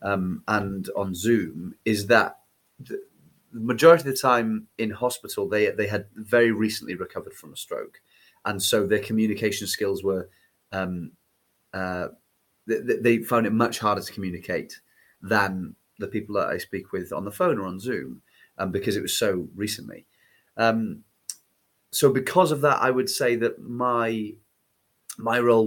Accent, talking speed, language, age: British, 160 wpm, English, 30-49